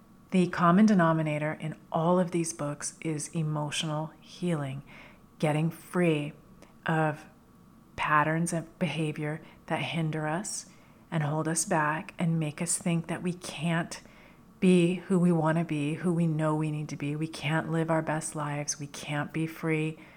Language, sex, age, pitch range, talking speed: English, female, 40-59, 155-170 Hz, 160 wpm